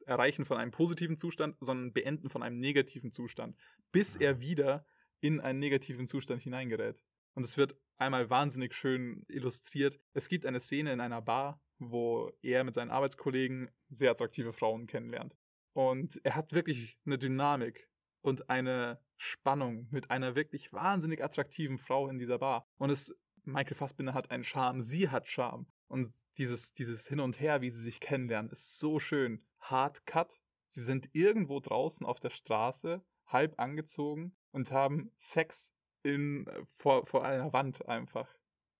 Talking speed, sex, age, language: 155 wpm, male, 20-39, German